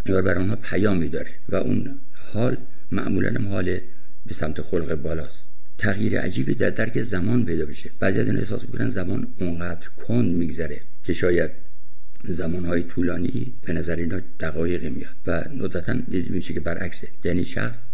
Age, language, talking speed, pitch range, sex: 60-79, Persian, 155 wpm, 80-95 Hz, male